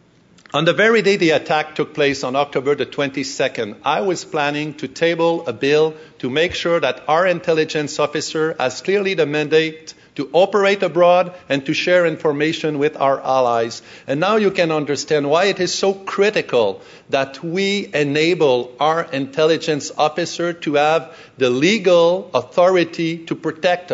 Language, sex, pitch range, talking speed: English, male, 135-170 Hz, 160 wpm